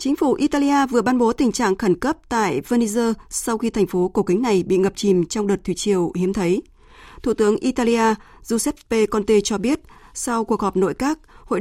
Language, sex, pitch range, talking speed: Vietnamese, female, 195-245 Hz, 210 wpm